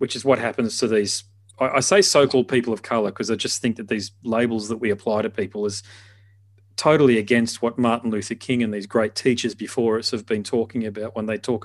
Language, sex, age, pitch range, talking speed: English, male, 30-49, 105-125 Hz, 225 wpm